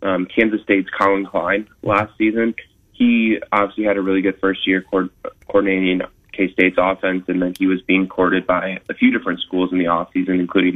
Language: English